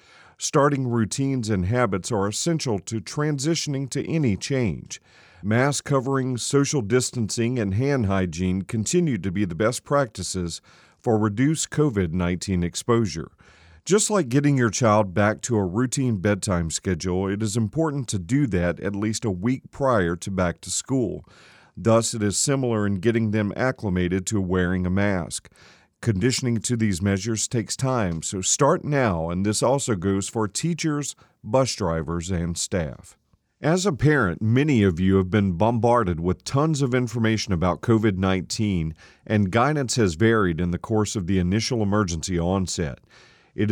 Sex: male